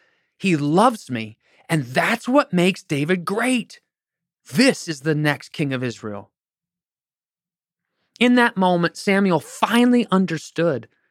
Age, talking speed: 30-49, 120 wpm